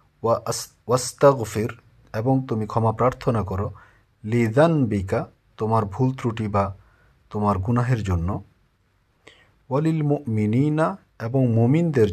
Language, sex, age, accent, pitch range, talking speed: Bengali, male, 50-69, native, 100-125 Hz, 100 wpm